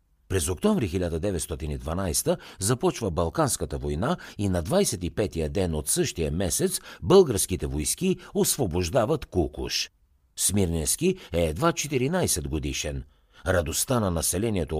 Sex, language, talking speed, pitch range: male, Bulgarian, 100 wpm, 80-130 Hz